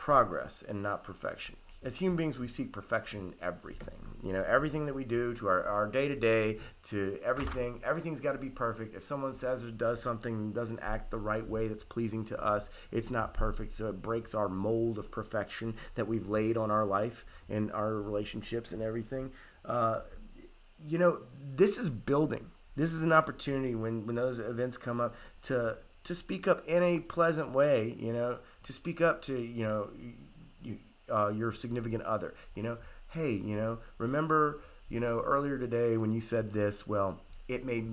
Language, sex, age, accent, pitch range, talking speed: English, male, 30-49, American, 105-130 Hz, 185 wpm